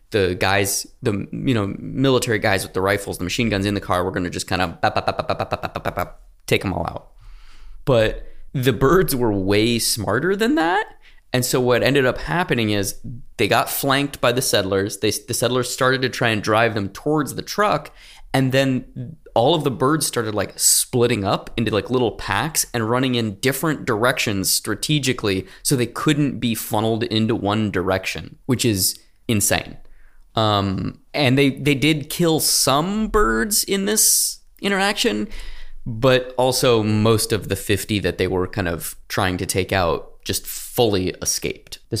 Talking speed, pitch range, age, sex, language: 170 wpm, 100-130 Hz, 20-39, male, English